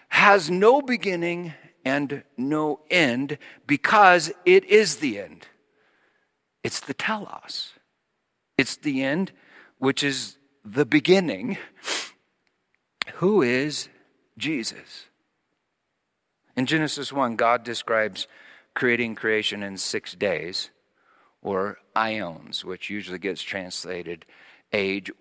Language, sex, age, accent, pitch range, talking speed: English, male, 50-69, American, 125-185 Hz, 100 wpm